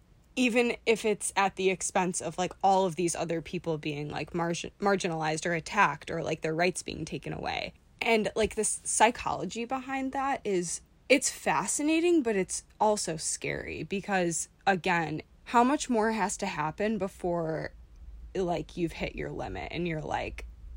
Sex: female